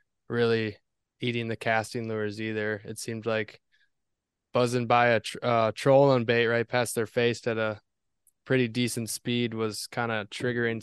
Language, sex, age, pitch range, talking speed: English, male, 20-39, 110-125 Hz, 165 wpm